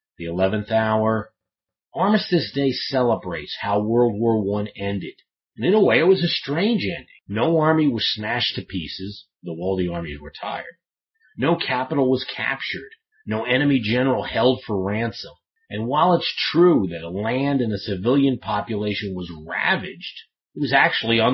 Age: 40-59